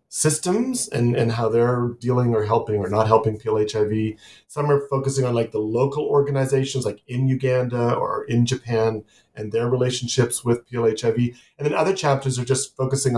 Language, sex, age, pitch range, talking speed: English, male, 40-59, 110-130 Hz, 175 wpm